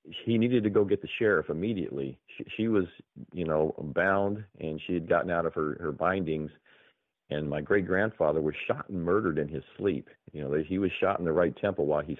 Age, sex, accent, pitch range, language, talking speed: 40-59, male, American, 75-100 Hz, English, 225 wpm